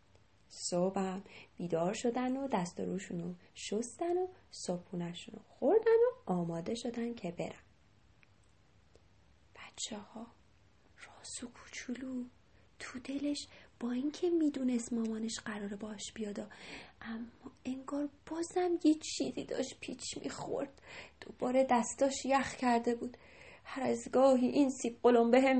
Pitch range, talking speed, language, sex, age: 180-300 Hz, 115 wpm, Persian, female, 30-49